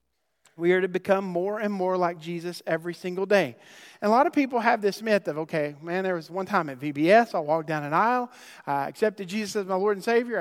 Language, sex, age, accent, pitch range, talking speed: English, male, 40-59, American, 145-195 Hz, 240 wpm